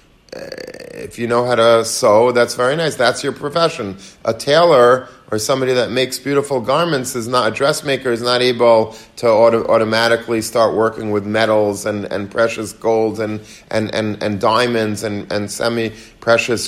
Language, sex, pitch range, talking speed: English, male, 115-140 Hz, 170 wpm